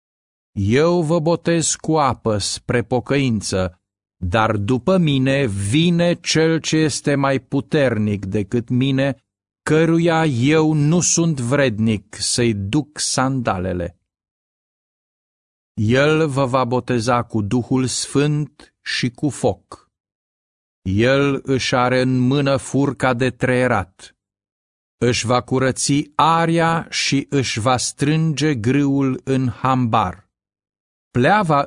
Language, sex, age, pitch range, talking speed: Romanian, male, 50-69, 105-140 Hz, 105 wpm